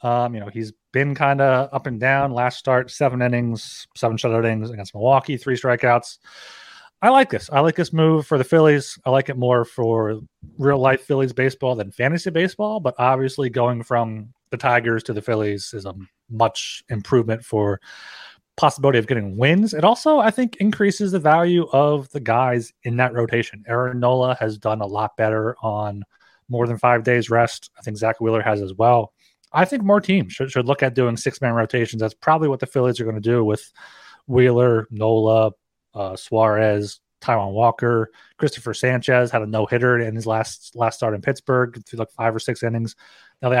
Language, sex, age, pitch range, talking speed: English, male, 30-49, 115-135 Hz, 195 wpm